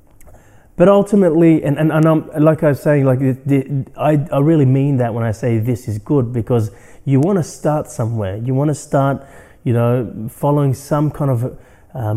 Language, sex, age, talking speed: English, male, 30-49, 195 wpm